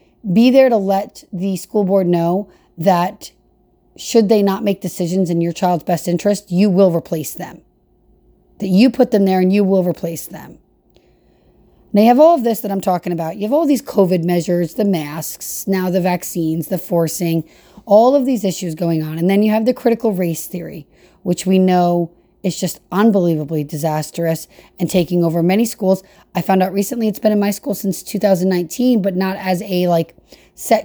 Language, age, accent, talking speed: English, 30-49, American, 190 wpm